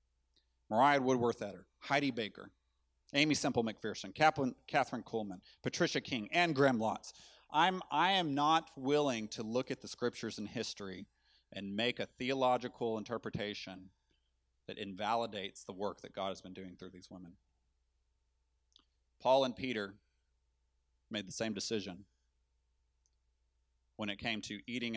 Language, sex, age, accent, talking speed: English, male, 30-49, American, 130 wpm